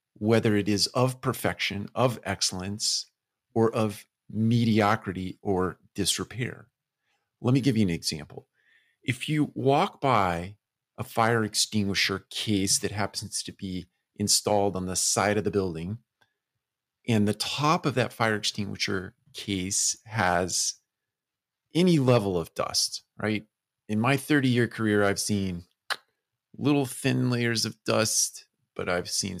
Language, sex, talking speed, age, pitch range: English, male, 135 wpm, 40-59, 100-125 Hz